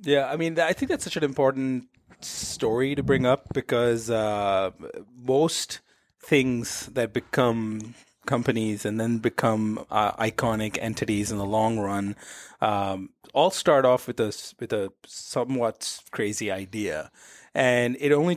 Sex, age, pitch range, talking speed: male, 30-49, 105-130 Hz, 140 wpm